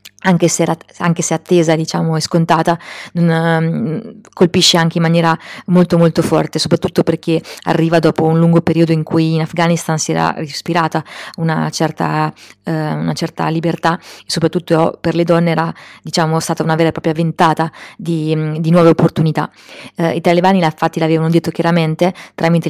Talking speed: 145 wpm